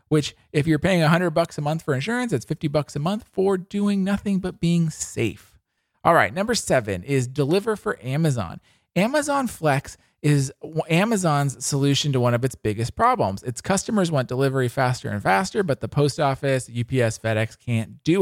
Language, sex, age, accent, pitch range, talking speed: English, male, 40-59, American, 125-175 Hz, 180 wpm